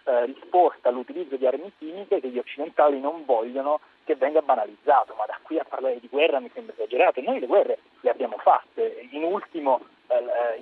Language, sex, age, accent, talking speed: Italian, male, 30-49, native, 185 wpm